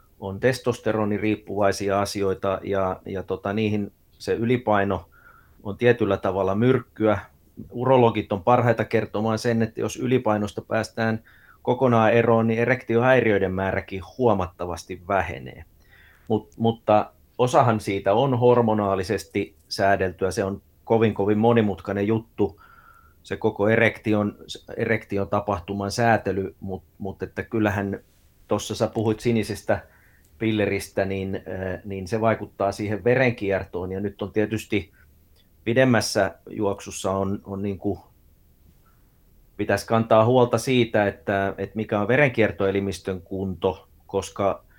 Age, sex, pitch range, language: 30-49, male, 95-115 Hz, Finnish